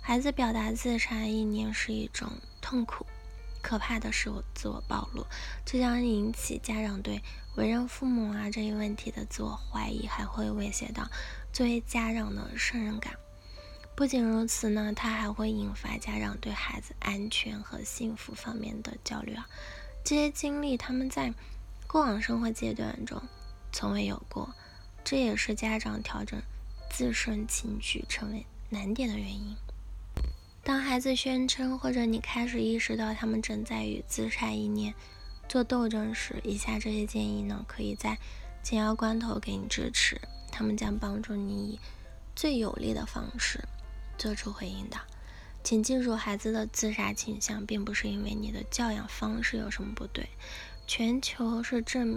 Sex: female